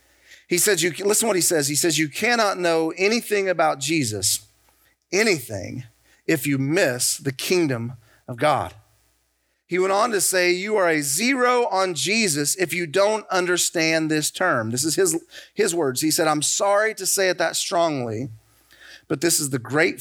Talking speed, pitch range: 175 wpm, 110-155 Hz